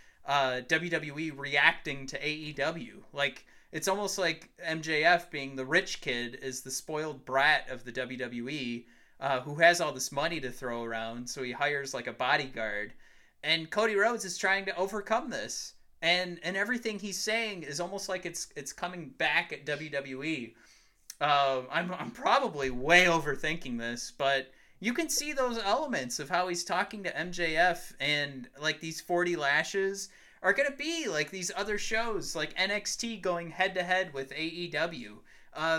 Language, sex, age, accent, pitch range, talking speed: English, male, 30-49, American, 135-185 Hz, 165 wpm